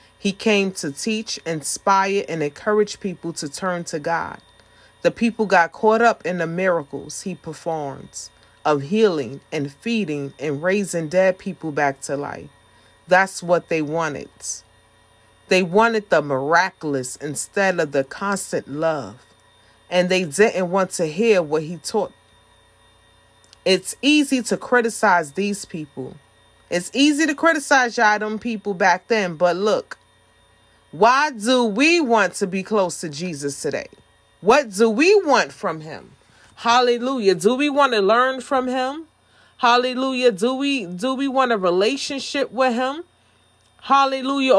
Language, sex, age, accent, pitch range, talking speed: English, female, 30-49, American, 155-240 Hz, 145 wpm